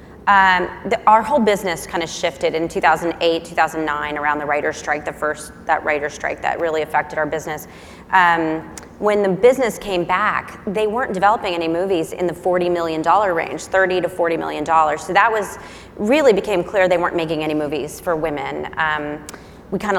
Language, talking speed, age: English, 190 wpm, 30-49